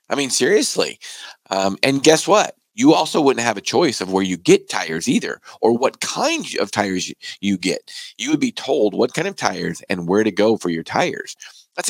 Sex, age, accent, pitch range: male, 40-59, American, 95-140 Hz